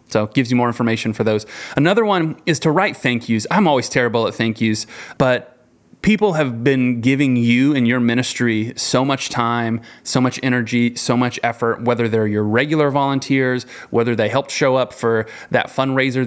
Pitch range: 120-150 Hz